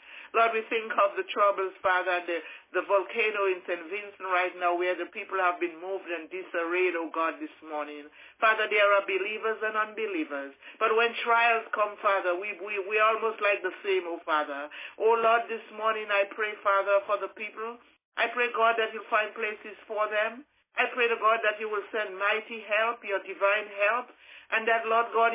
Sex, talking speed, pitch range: male, 190 wpm, 180-230 Hz